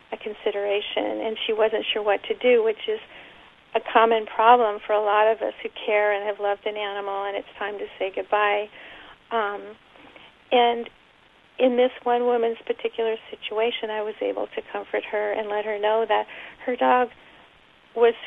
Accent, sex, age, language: American, female, 50-69, English